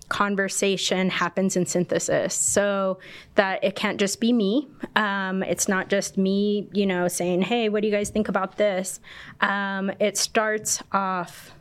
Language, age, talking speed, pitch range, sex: English, 20-39, 160 wpm, 180-205 Hz, female